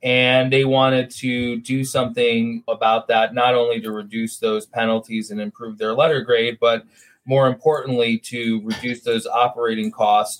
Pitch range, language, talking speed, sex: 115-135 Hz, English, 155 wpm, male